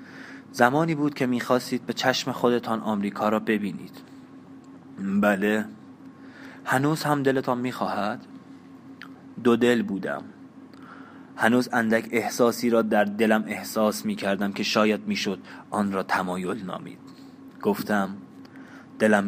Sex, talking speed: male, 110 wpm